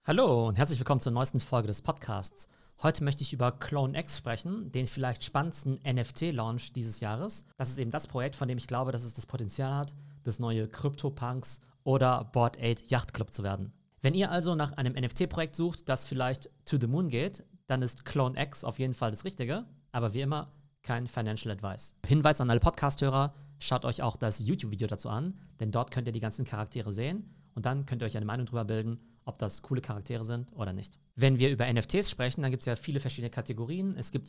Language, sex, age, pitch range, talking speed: German, male, 40-59, 115-145 Hz, 210 wpm